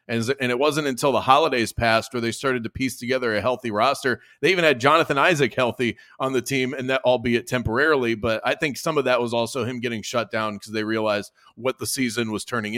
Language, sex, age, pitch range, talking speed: English, male, 30-49, 115-140 Hz, 235 wpm